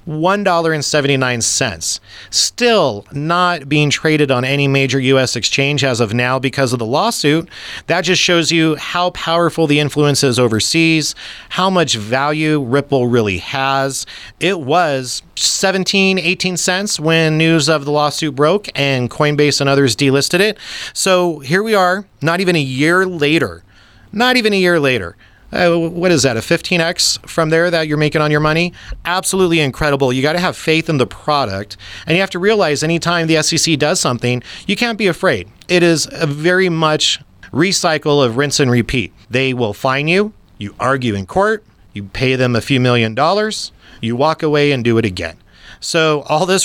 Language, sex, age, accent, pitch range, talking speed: English, male, 30-49, American, 135-175 Hz, 180 wpm